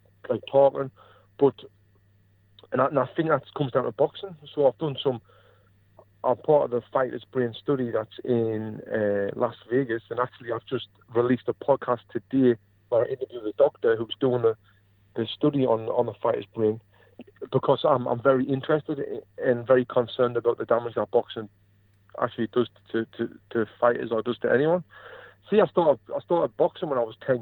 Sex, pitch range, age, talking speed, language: male, 105-140 Hz, 40-59, 190 wpm, English